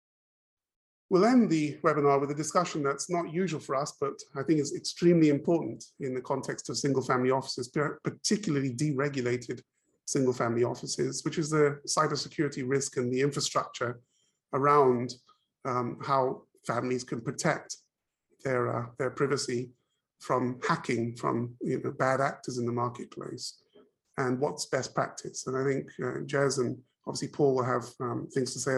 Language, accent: English, British